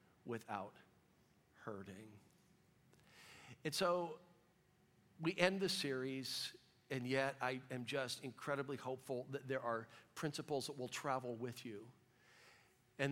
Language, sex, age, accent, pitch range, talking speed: English, male, 50-69, American, 120-155 Hz, 115 wpm